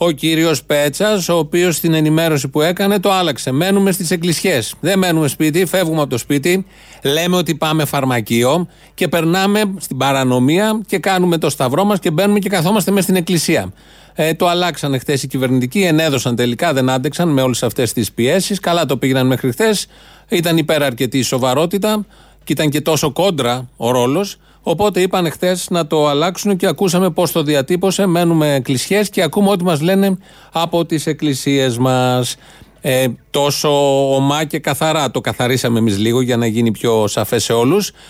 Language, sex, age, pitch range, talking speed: Greek, male, 30-49, 135-180 Hz, 175 wpm